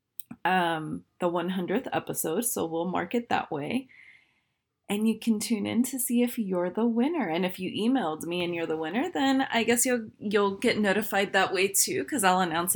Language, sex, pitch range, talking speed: English, female, 185-250 Hz, 200 wpm